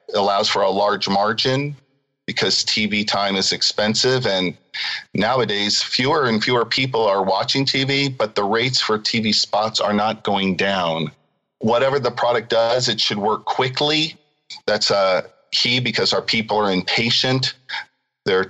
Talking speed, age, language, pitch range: 150 wpm, 40-59, English, 105-130 Hz